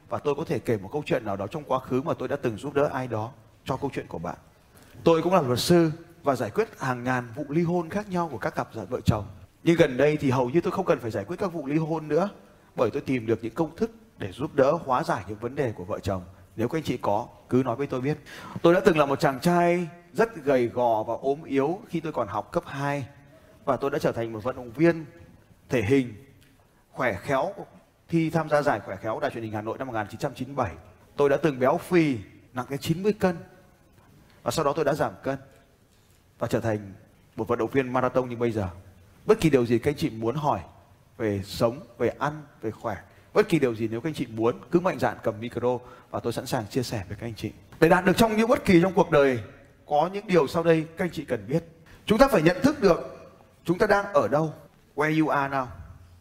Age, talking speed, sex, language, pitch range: 20-39, 255 wpm, male, Vietnamese, 115-165 Hz